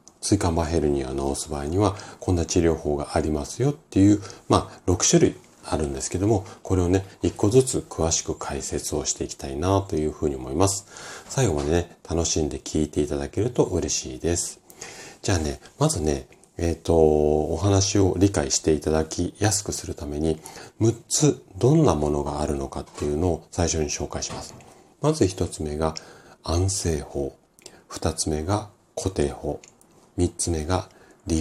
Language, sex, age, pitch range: Japanese, male, 40-59, 75-100 Hz